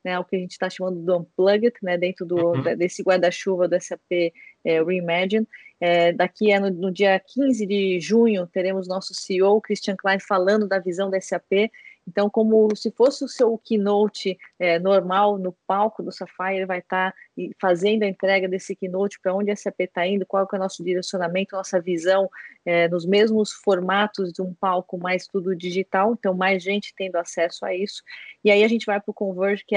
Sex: female